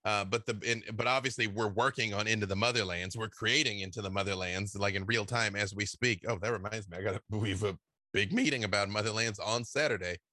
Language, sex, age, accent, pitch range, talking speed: English, male, 30-49, American, 100-120 Hz, 225 wpm